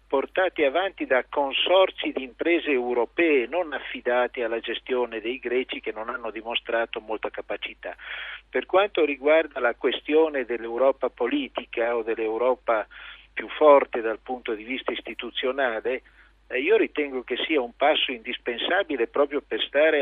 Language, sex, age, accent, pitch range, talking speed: Italian, male, 50-69, native, 125-175 Hz, 135 wpm